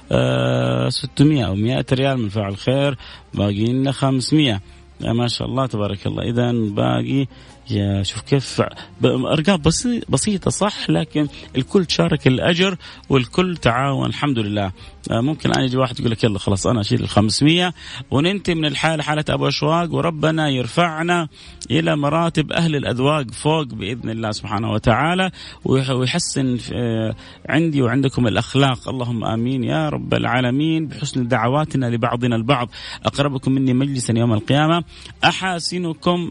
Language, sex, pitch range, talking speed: English, male, 110-145 Hz, 125 wpm